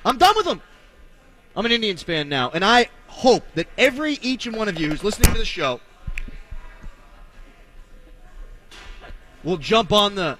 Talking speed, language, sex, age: 160 wpm, English, male, 30-49